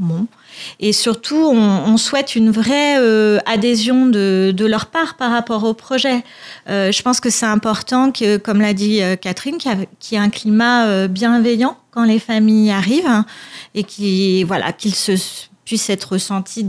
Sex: female